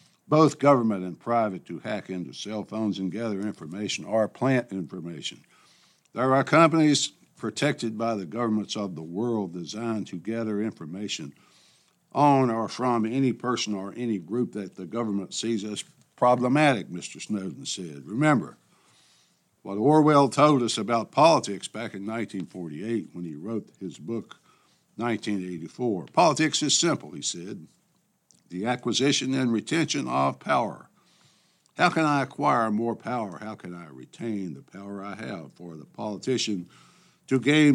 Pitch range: 105-140 Hz